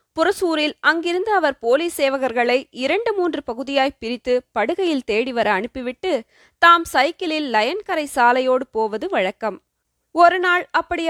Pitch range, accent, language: 235-330 Hz, native, Tamil